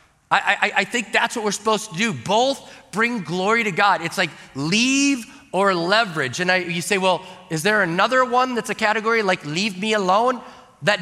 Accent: American